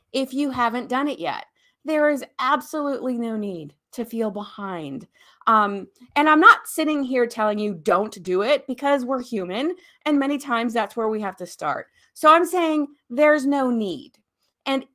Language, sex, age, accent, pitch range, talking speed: English, female, 30-49, American, 220-295 Hz, 175 wpm